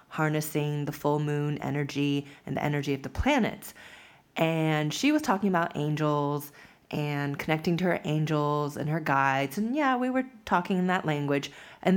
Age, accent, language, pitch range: 20-39, American, English, 150-200 Hz